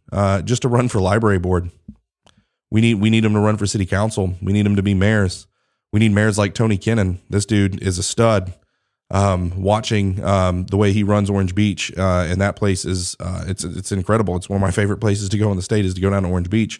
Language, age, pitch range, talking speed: English, 30-49, 95-110 Hz, 250 wpm